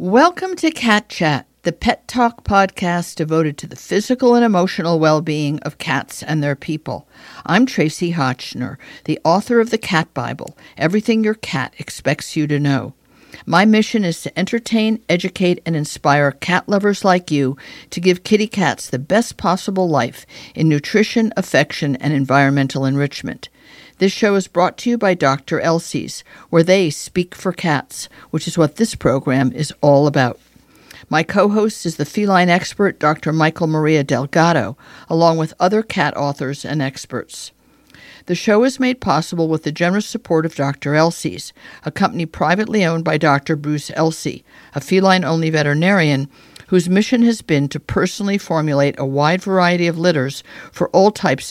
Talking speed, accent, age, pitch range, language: 160 wpm, American, 50-69, 145-190 Hz, English